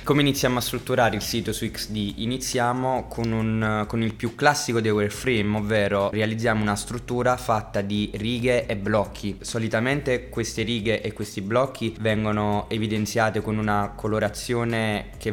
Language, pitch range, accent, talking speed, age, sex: Italian, 105-125 Hz, native, 145 wpm, 20-39, male